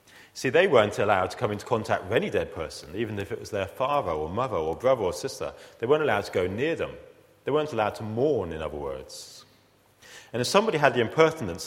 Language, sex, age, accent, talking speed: English, male, 40-59, British, 230 wpm